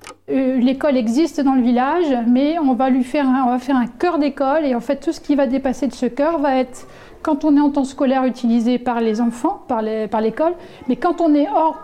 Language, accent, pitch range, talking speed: French, French, 185-275 Hz, 235 wpm